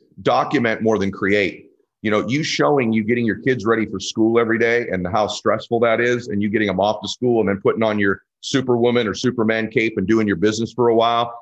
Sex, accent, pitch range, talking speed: male, American, 105-130 Hz, 235 wpm